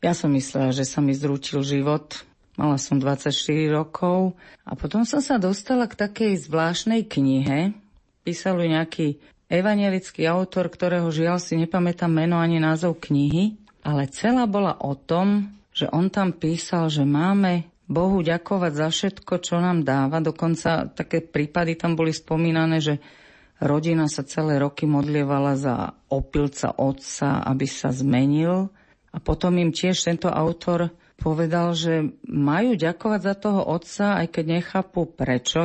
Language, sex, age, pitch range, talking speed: Slovak, female, 40-59, 150-185 Hz, 145 wpm